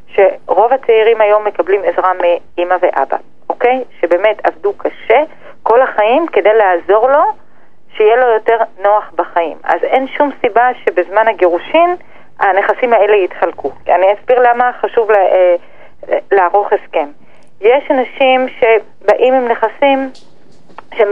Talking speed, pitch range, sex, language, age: 120 wpm, 200-275 Hz, female, Hebrew, 40-59